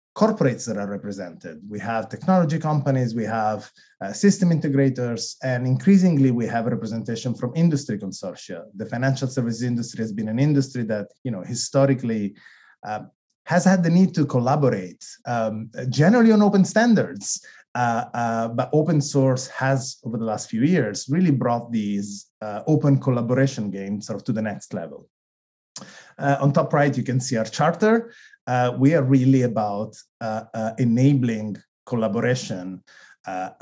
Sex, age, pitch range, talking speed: male, 30-49, 110-140 Hz, 155 wpm